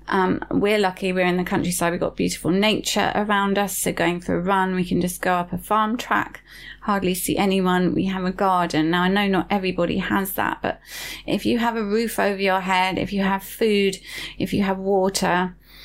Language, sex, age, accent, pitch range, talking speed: English, female, 20-39, British, 180-205 Hz, 215 wpm